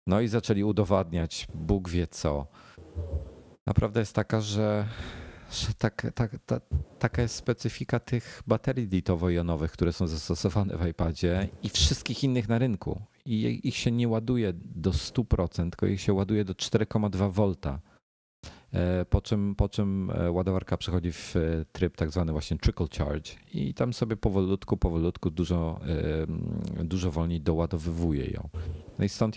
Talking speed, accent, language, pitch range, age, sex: 145 wpm, native, Polish, 85-105 Hz, 40-59, male